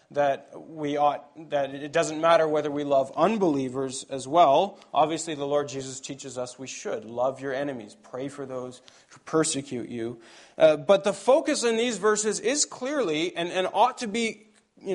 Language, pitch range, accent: English, 140-205 Hz, American